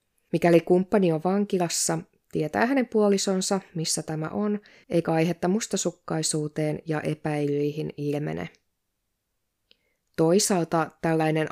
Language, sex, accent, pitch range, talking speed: Finnish, female, native, 150-185 Hz, 95 wpm